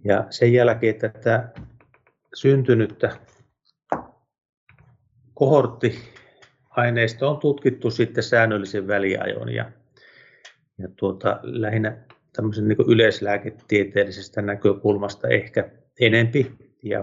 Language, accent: Finnish, native